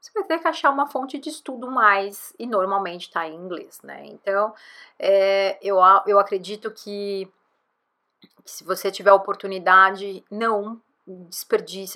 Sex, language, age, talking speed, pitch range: female, Portuguese, 30-49, 150 wpm, 190-255 Hz